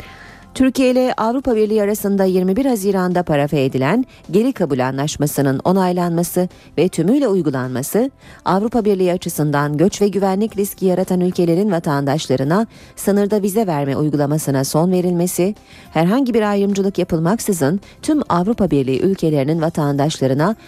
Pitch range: 150-215 Hz